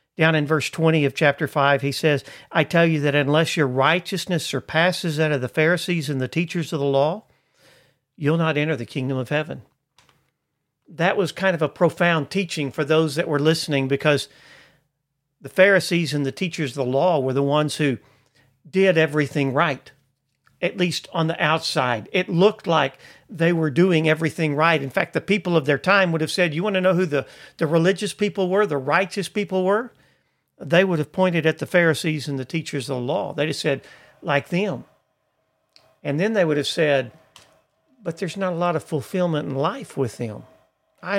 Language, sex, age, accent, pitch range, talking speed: English, male, 50-69, American, 140-175 Hz, 195 wpm